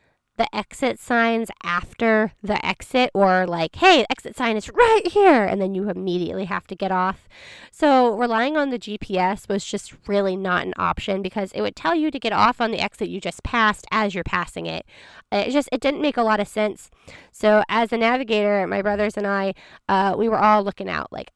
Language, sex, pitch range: English, female, 195-235 Hz